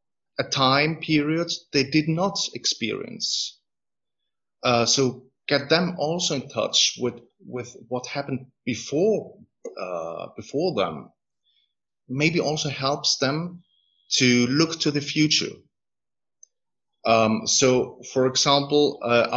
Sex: male